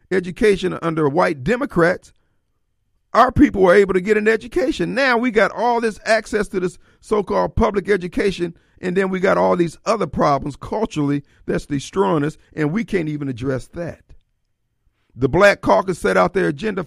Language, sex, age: English, male, 50-69